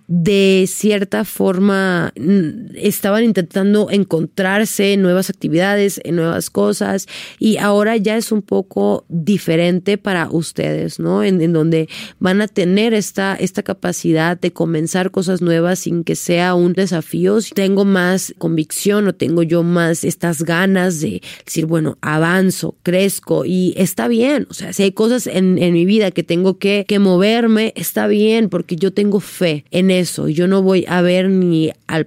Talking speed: 165 wpm